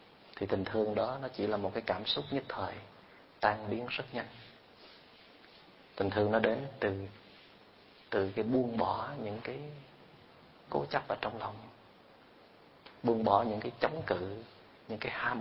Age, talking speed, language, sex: 30-49, 165 wpm, Vietnamese, male